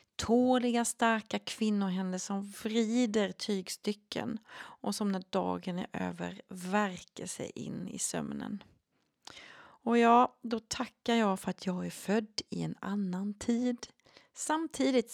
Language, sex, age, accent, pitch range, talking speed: Swedish, female, 30-49, native, 190-240 Hz, 125 wpm